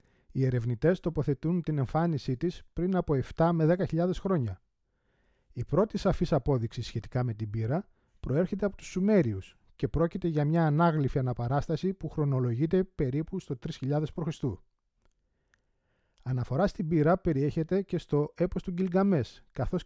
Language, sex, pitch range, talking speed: Greek, male, 130-175 Hz, 140 wpm